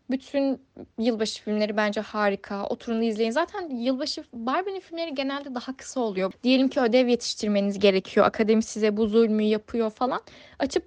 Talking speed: 150 wpm